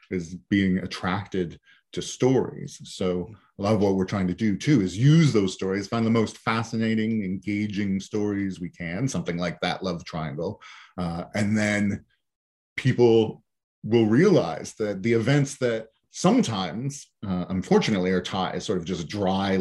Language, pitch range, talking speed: English, 95-115 Hz, 160 wpm